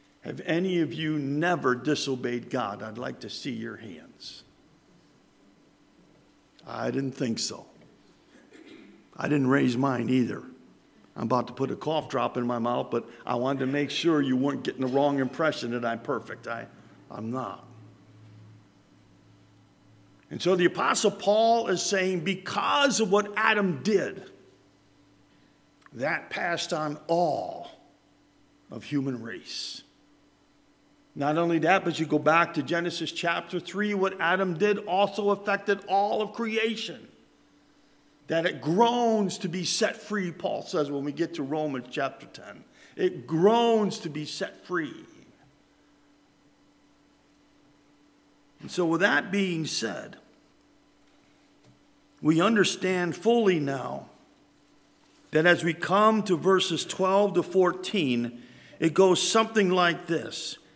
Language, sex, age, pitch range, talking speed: English, male, 50-69, 135-190 Hz, 130 wpm